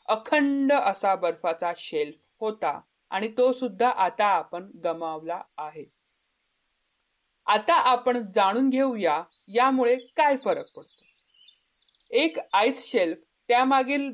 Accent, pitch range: native, 195-270 Hz